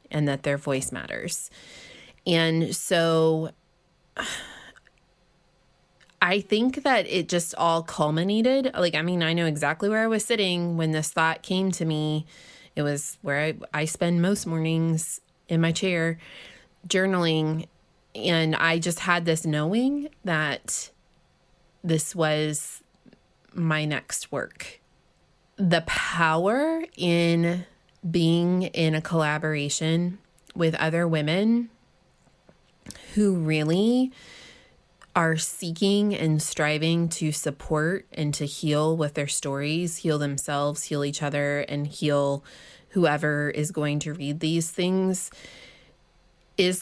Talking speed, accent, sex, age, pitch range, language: 120 wpm, American, female, 20-39, 155-180 Hz, English